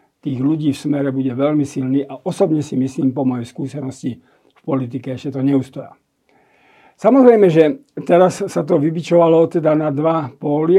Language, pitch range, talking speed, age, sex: Slovak, 135-170 Hz, 160 wpm, 50-69, male